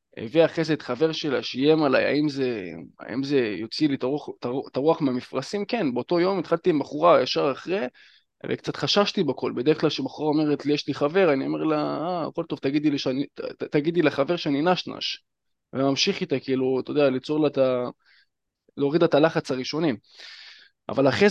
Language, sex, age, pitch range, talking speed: Hebrew, male, 20-39, 140-185 Hz, 180 wpm